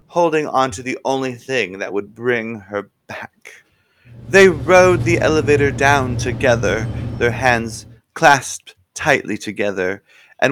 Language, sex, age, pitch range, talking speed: English, male, 30-49, 115-160 Hz, 130 wpm